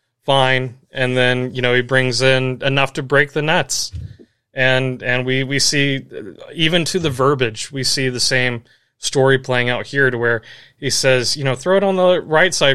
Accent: American